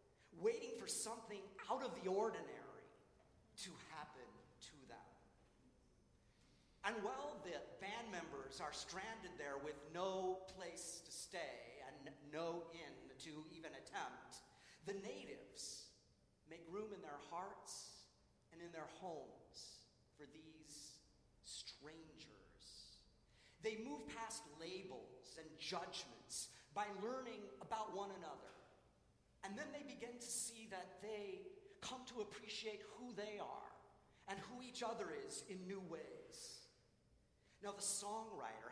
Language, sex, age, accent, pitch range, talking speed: English, male, 40-59, American, 155-225 Hz, 125 wpm